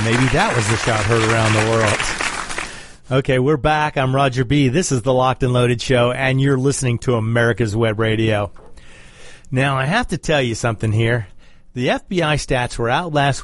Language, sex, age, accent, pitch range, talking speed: English, male, 40-59, American, 120-160 Hz, 190 wpm